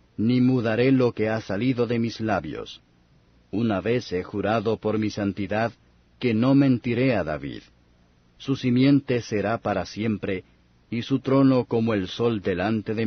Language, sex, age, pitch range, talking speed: Spanish, male, 50-69, 90-120 Hz, 155 wpm